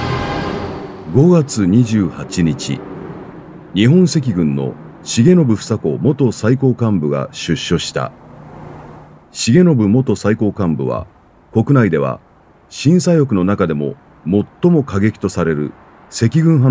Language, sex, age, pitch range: Japanese, male, 40-59, 85-135 Hz